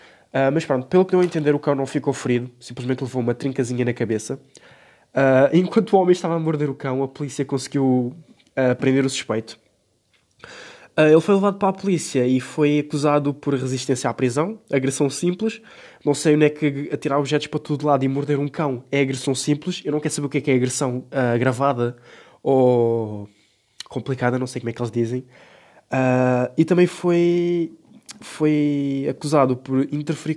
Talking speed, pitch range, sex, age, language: 175 wpm, 120-150 Hz, male, 20-39, Portuguese